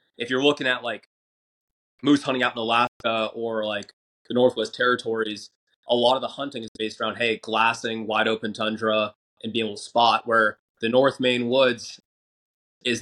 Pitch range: 110-125 Hz